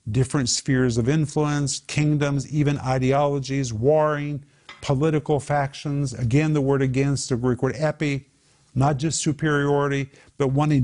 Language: English